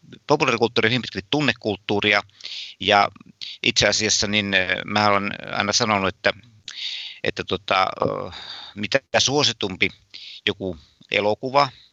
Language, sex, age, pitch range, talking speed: Finnish, male, 50-69, 100-115 Hz, 100 wpm